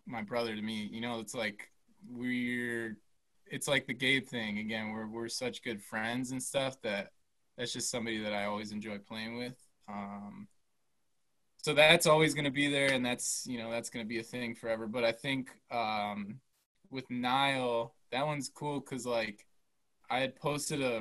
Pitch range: 115-145 Hz